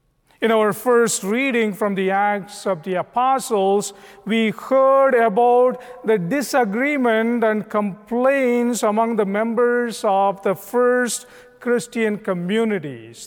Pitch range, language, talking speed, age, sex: 195-245 Hz, English, 115 wpm, 50-69, male